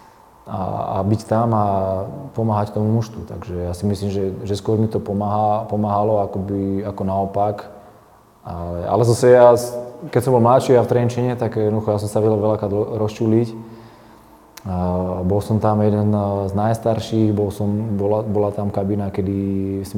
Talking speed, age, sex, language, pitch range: 160 wpm, 20-39, male, Slovak, 100-115 Hz